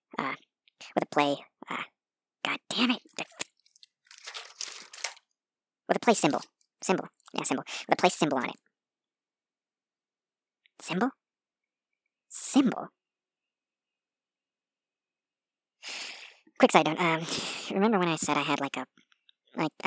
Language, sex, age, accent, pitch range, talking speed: English, male, 40-59, American, 145-170 Hz, 110 wpm